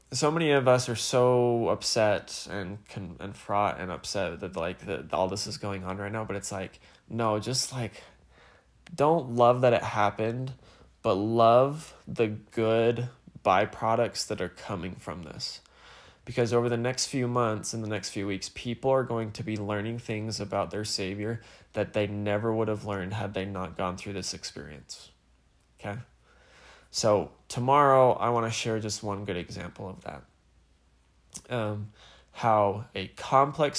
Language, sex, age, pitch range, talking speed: English, male, 20-39, 95-115 Hz, 165 wpm